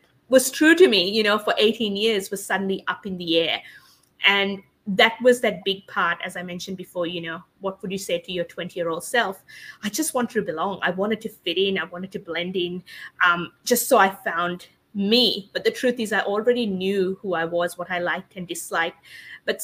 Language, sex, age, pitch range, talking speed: English, female, 20-39, 185-235 Hz, 225 wpm